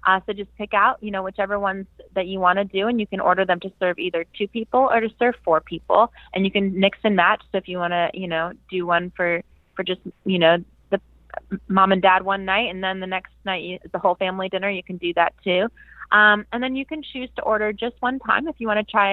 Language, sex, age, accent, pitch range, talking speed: English, female, 20-39, American, 175-210 Hz, 265 wpm